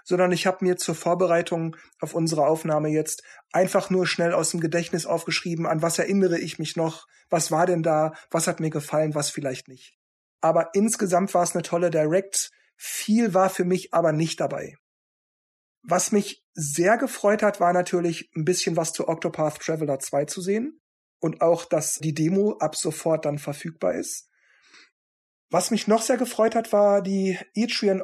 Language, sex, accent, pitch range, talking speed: German, male, German, 155-195 Hz, 180 wpm